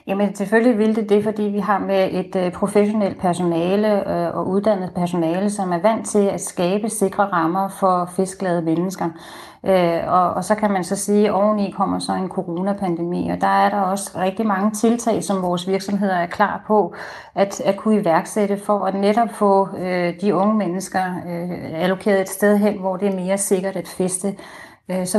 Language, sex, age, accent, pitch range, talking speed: Danish, female, 30-49, native, 175-205 Hz, 175 wpm